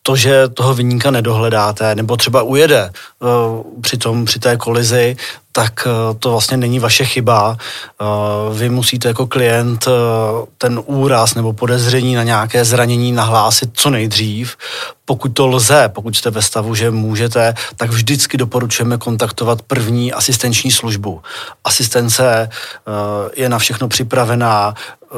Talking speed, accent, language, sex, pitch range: 125 wpm, native, Czech, male, 115-125 Hz